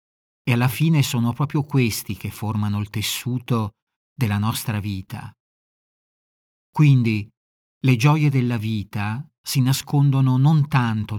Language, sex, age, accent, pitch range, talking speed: Italian, male, 40-59, native, 110-135 Hz, 120 wpm